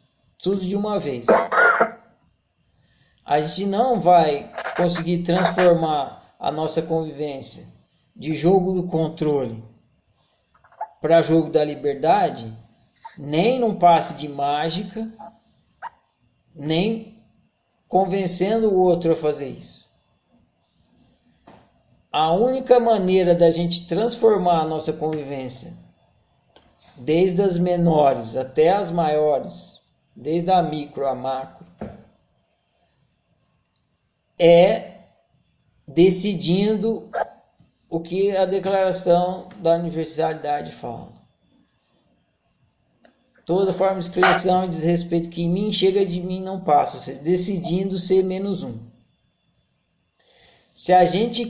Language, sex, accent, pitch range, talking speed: Portuguese, male, Brazilian, 155-190 Hz, 100 wpm